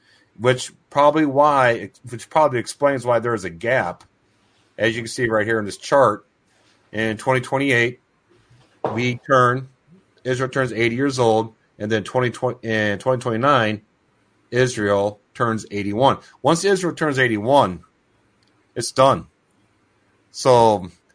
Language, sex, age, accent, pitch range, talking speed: English, male, 40-59, American, 110-130 Hz, 140 wpm